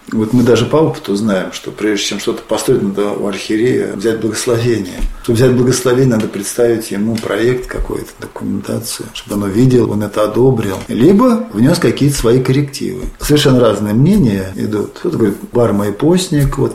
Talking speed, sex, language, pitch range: 160 wpm, male, Russian, 115-150 Hz